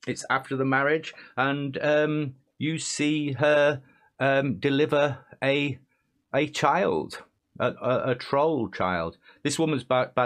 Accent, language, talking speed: British, English, 135 wpm